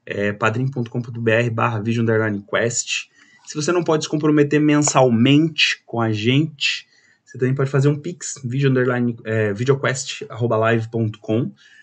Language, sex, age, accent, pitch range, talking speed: Portuguese, male, 20-39, Brazilian, 110-140 Hz, 120 wpm